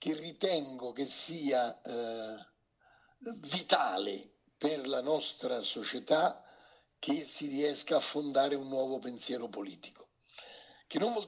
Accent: native